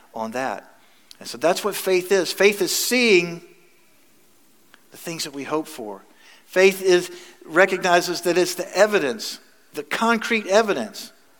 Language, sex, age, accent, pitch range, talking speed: English, male, 50-69, American, 135-180 Hz, 140 wpm